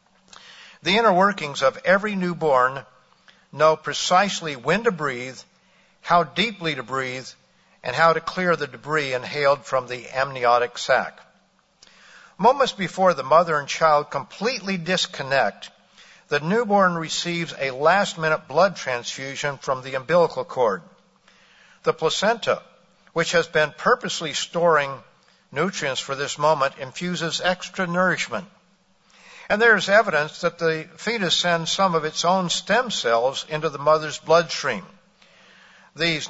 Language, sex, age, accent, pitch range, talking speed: English, male, 60-79, American, 140-180 Hz, 130 wpm